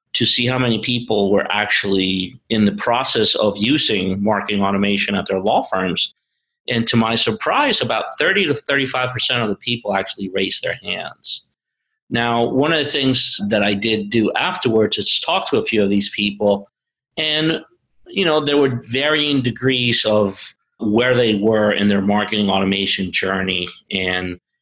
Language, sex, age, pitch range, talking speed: English, male, 50-69, 100-120 Hz, 170 wpm